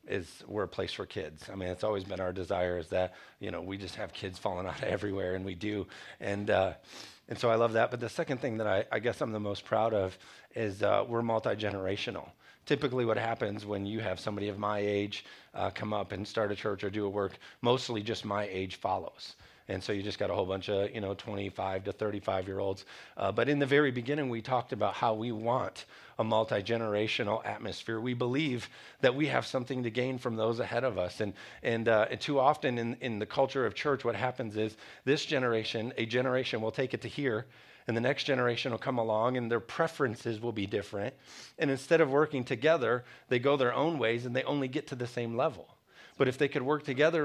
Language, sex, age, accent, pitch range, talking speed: English, male, 40-59, American, 105-130 Hz, 230 wpm